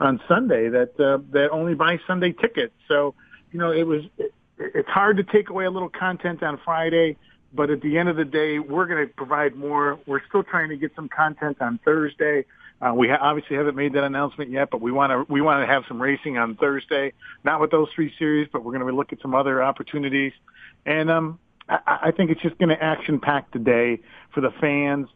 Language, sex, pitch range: English, male, 130-155 Hz